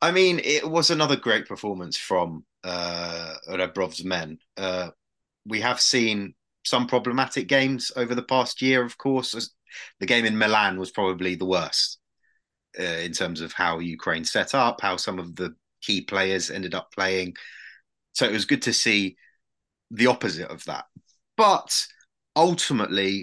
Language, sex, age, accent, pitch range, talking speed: English, male, 30-49, British, 95-130 Hz, 160 wpm